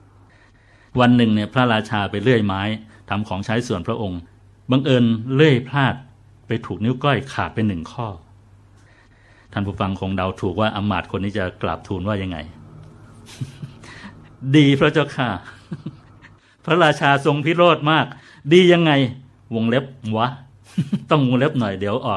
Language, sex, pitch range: Thai, male, 100-125 Hz